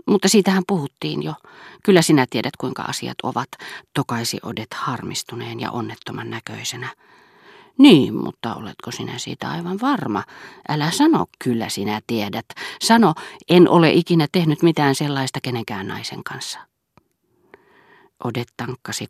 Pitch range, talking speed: 115-185 Hz, 125 wpm